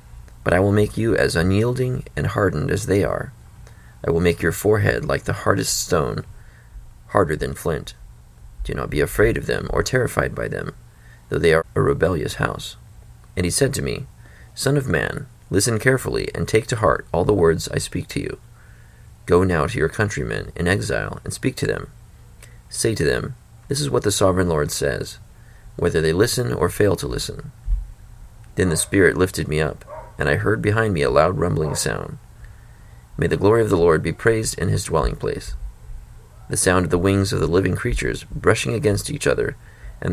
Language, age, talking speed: English, 30-49, 195 wpm